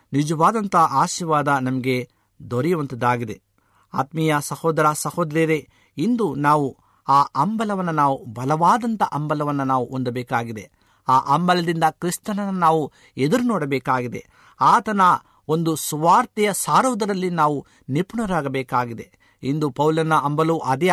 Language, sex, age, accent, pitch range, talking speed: Kannada, male, 50-69, native, 130-180 Hz, 90 wpm